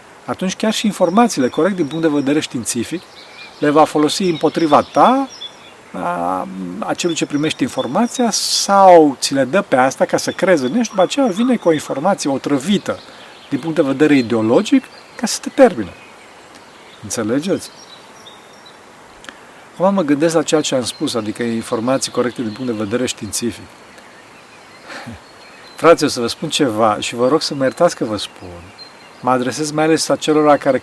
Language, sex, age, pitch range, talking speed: Romanian, male, 40-59, 125-165 Hz, 165 wpm